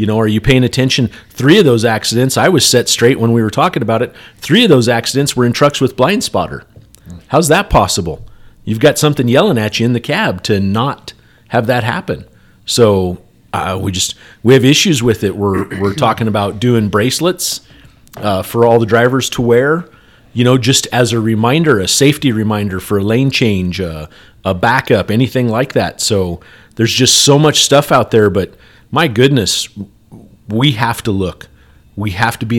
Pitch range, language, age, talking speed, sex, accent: 105-130 Hz, English, 40-59, 195 wpm, male, American